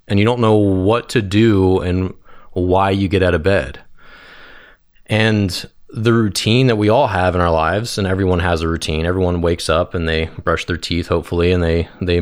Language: English